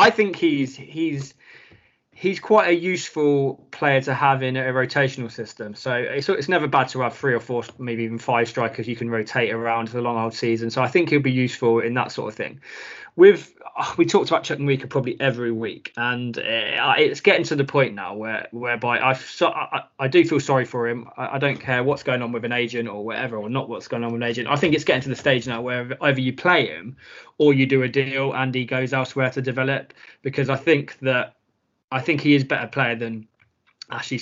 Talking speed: 225 wpm